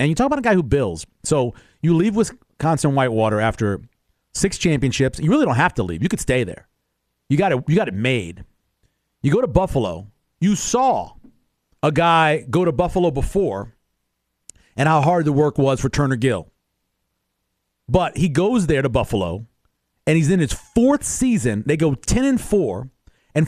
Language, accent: English, American